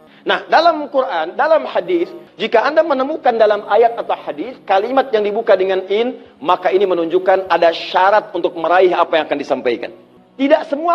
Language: Indonesian